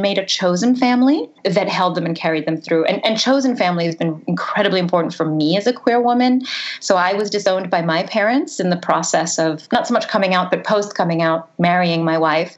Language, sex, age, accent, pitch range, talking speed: English, female, 30-49, American, 170-220 Hz, 230 wpm